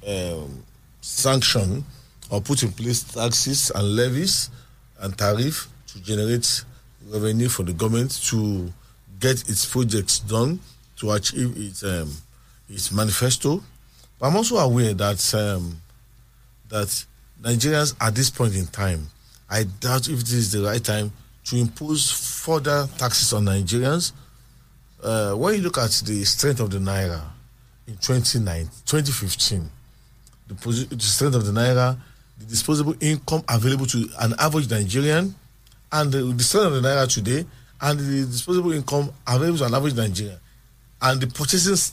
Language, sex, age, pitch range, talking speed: English, male, 40-59, 110-140 Hz, 145 wpm